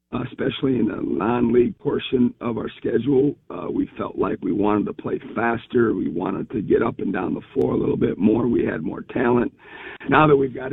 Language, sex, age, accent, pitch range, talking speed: English, male, 50-69, American, 120-150 Hz, 220 wpm